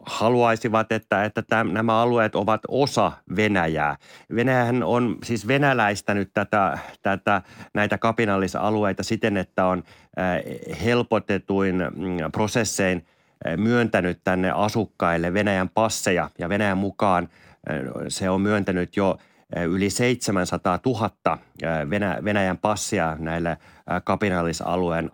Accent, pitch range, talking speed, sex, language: native, 90-110 Hz, 100 wpm, male, Finnish